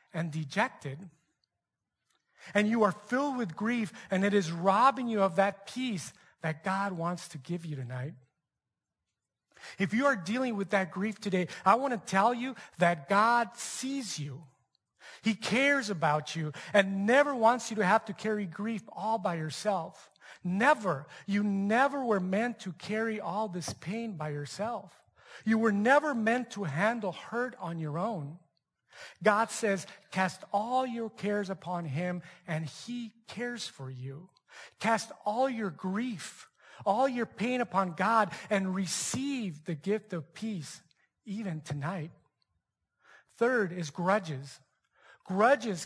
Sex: male